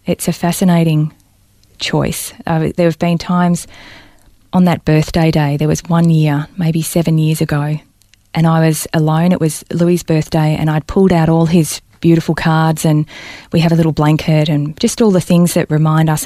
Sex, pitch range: female, 150-175 Hz